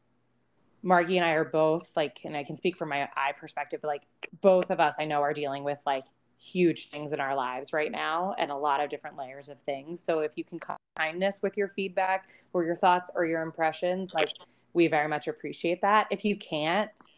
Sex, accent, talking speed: female, American, 220 wpm